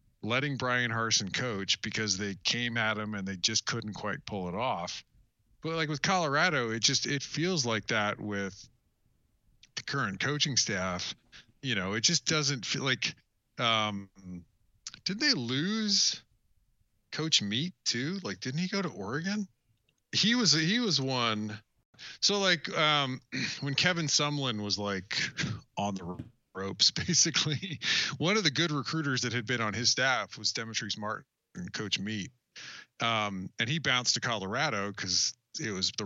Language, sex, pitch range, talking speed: English, male, 100-145 Hz, 165 wpm